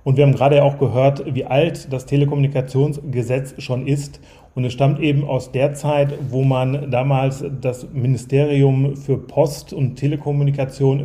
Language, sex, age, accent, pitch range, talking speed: German, male, 30-49, German, 125-145 Hz, 150 wpm